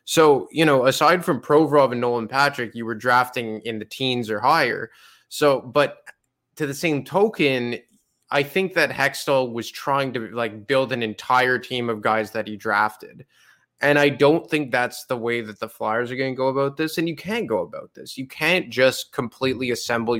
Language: English